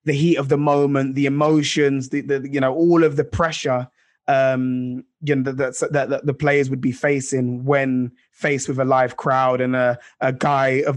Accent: British